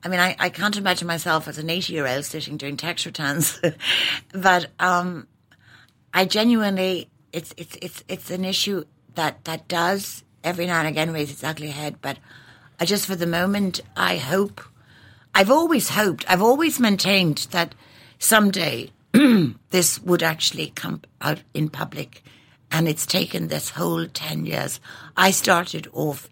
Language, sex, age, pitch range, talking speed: English, female, 60-79, 125-180 Hz, 160 wpm